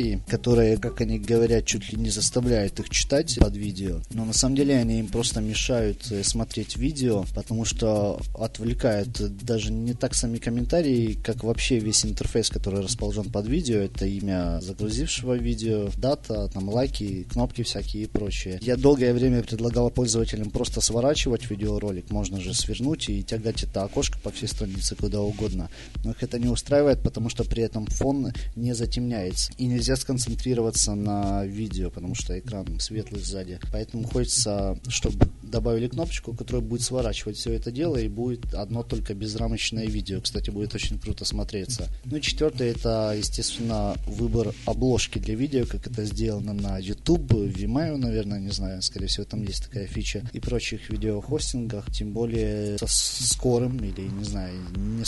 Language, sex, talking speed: Russian, male, 160 wpm